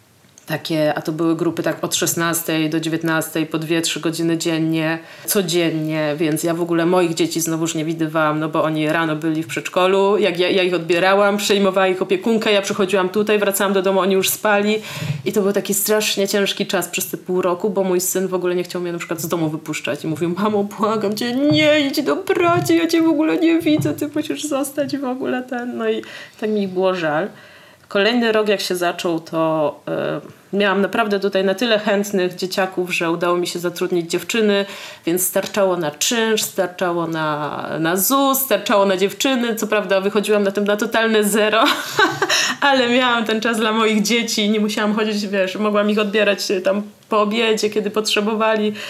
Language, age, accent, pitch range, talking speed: Polish, 30-49, native, 175-215 Hz, 195 wpm